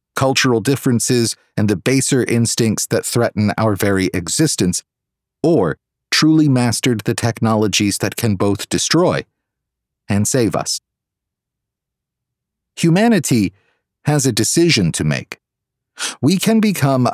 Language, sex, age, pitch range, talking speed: English, male, 40-59, 105-135 Hz, 110 wpm